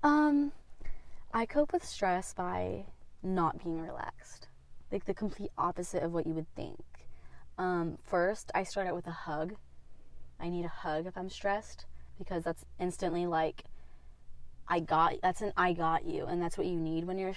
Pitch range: 155-190 Hz